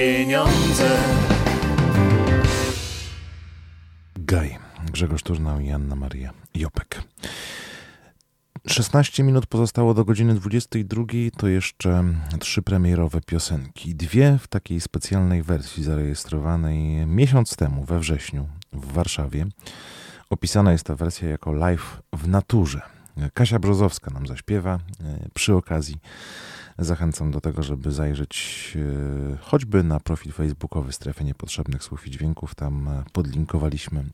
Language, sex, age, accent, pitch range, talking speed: Polish, male, 30-49, native, 75-95 Hz, 105 wpm